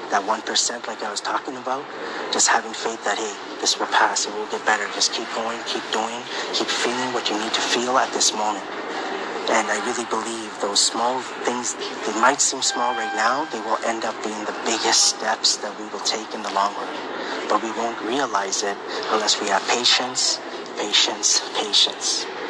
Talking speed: 195 wpm